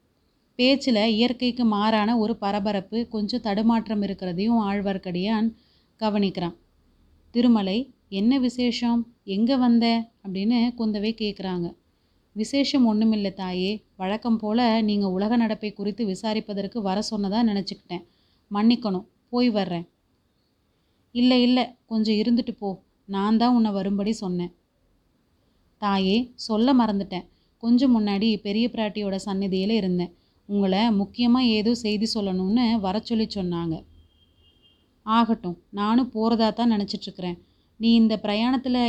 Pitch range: 195-230 Hz